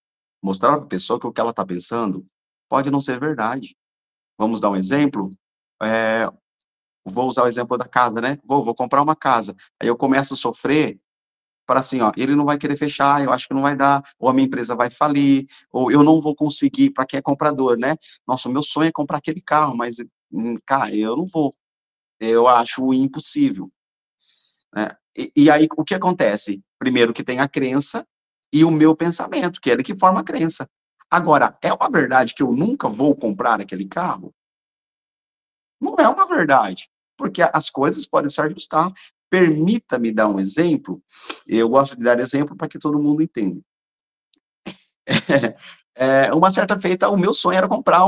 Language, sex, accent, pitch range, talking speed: Portuguese, male, Brazilian, 120-160 Hz, 185 wpm